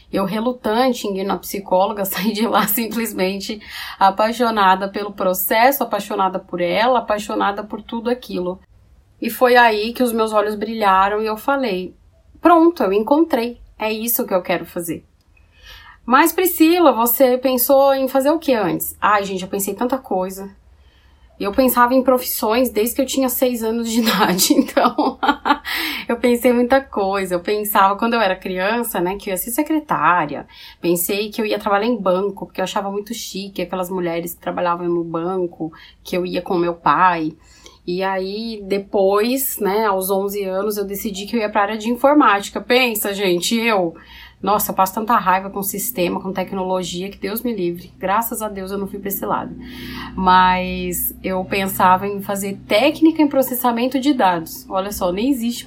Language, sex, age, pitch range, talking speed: Portuguese, female, 20-39, 190-240 Hz, 180 wpm